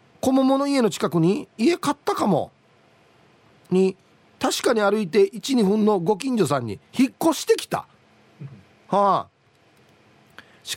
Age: 40-59